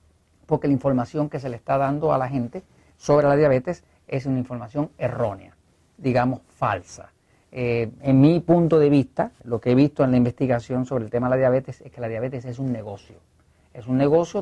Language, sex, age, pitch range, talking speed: Spanish, male, 40-59, 120-155 Hz, 205 wpm